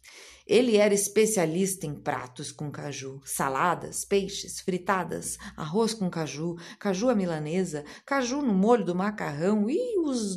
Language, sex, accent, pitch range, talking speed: Portuguese, female, Brazilian, 160-220 Hz, 135 wpm